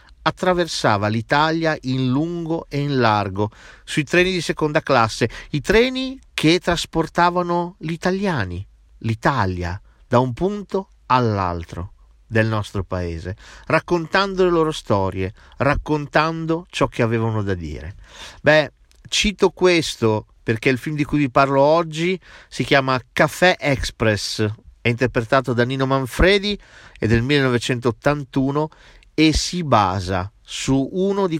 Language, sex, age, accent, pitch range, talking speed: Italian, male, 50-69, native, 110-165 Hz, 125 wpm